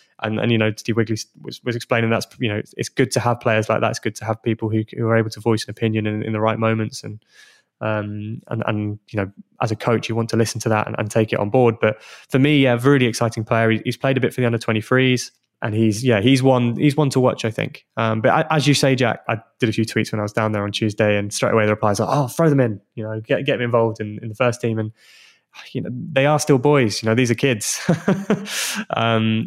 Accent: British